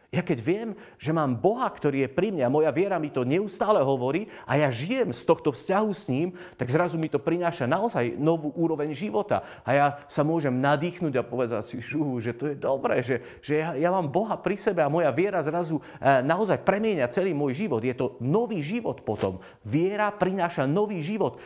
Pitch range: 130-190 Hz